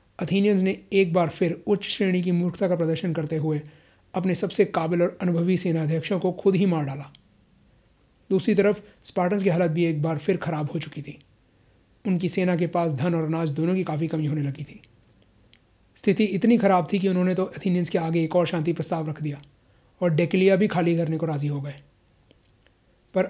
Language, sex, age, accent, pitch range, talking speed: Hindi, male, 30-49, native, 150-185 Hz, 200 wpm